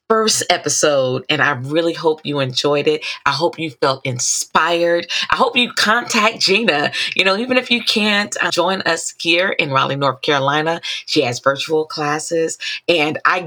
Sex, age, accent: female, 40-59, American